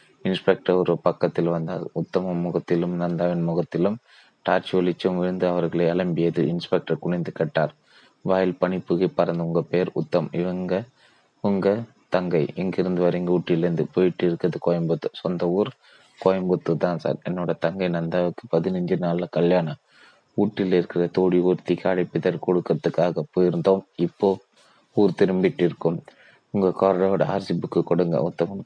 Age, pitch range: 30-49, 85-95 Hz